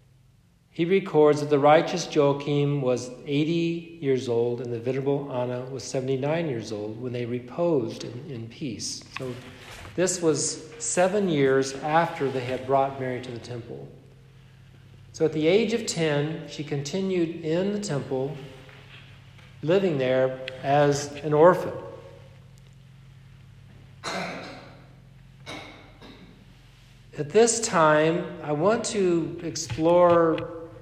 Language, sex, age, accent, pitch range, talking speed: English, male, 50-69, American, 130-155 Hz, 115 wpm